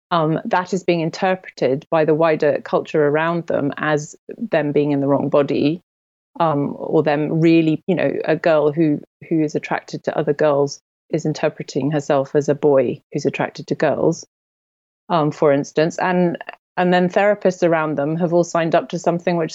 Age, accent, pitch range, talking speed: 30-49, British, 150-180 Hz, 180 wpm